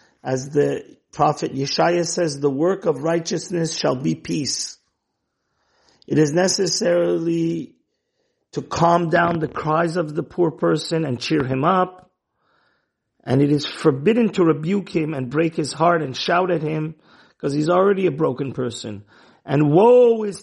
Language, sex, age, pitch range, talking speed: English, male, 50-69, 150-185 Hz, 155 wpm